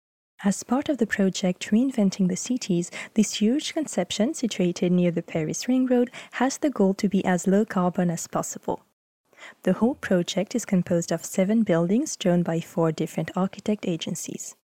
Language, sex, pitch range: French, female, 180-225 Hz